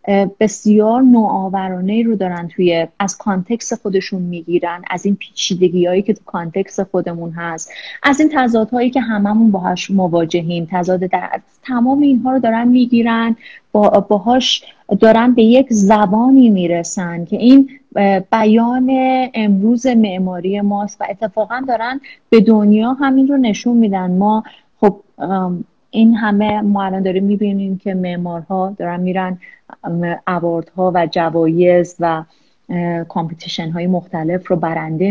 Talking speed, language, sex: 130 wpm, Persian, female